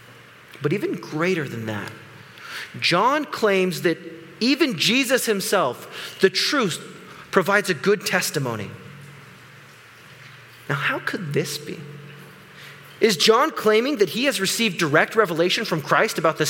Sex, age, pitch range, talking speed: male, 30-49, 155-225 Hz, 125 wpm